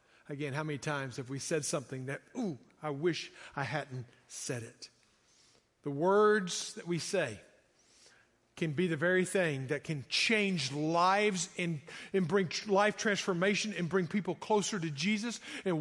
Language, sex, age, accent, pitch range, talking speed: English, male, 50-69, American, 145-195 Hz, 160 wpm